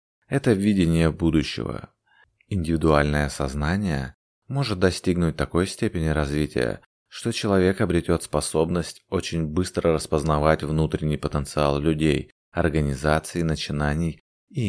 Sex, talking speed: male, 95 wpm